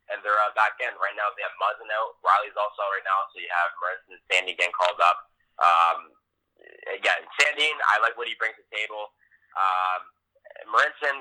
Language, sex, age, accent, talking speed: English, male, 20-39, American, 205 wpm